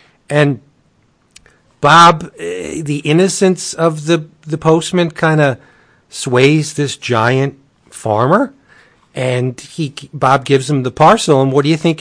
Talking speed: 135 wpm